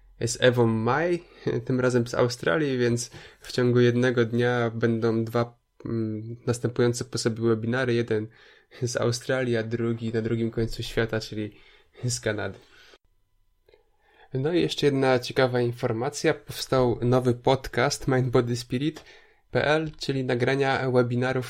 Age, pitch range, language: 20-39, 115-130 Hz, Polish